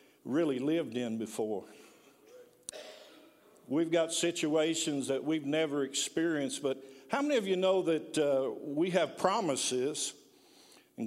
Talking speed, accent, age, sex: 125 wpm, American, 50-69, male